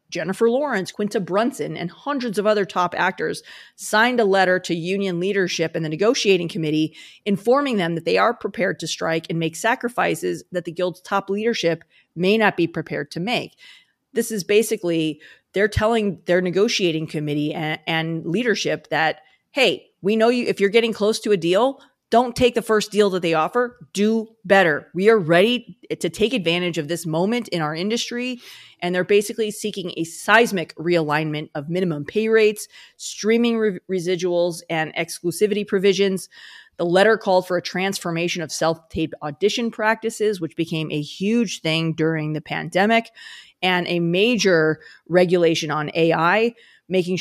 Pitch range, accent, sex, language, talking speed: 165-215 Hz, American, female, English, 165 wpm